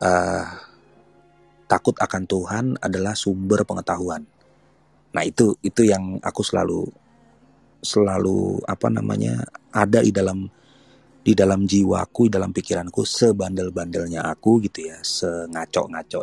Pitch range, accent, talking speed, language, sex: 85-110 Hz, native, 115 wpm, Indonesian, male